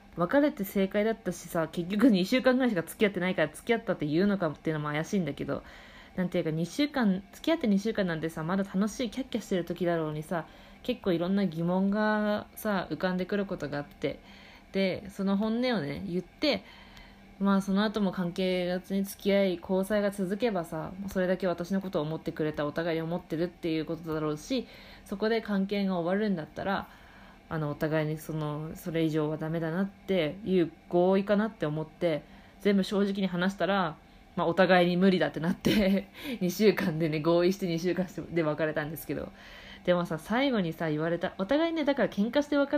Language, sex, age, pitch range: Japanese, female, 20-39, 165-205 Hz